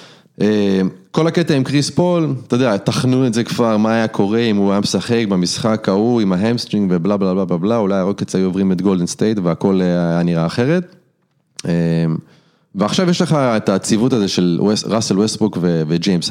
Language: English